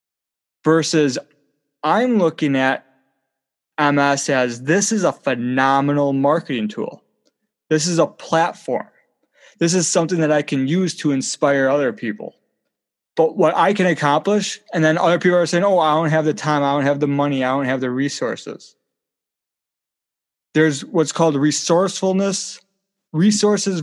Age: 20-39